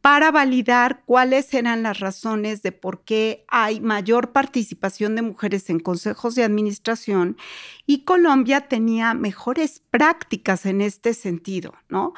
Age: 40-59